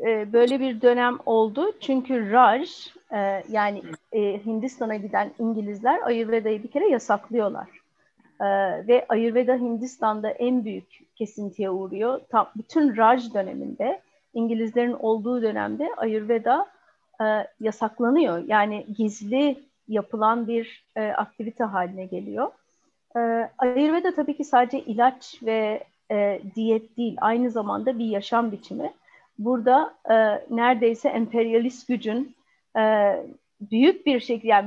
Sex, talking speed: female, 105 wpm